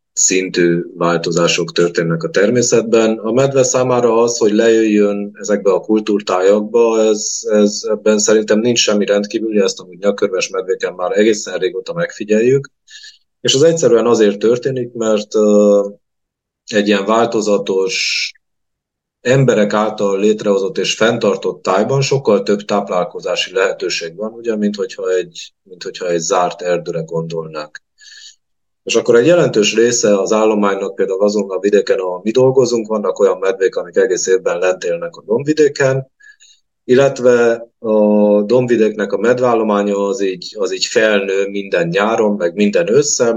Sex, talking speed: male, 125 wpm